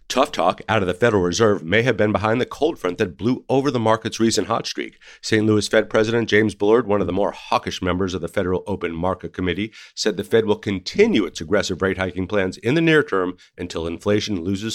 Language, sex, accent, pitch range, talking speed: English, male, American, 95-110 Hz, 230 wpm